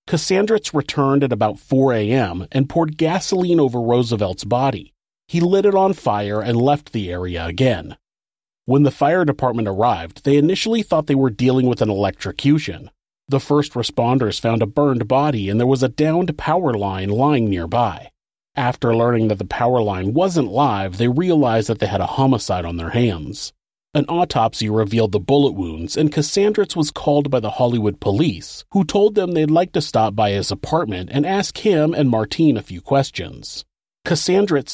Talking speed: 180 wpm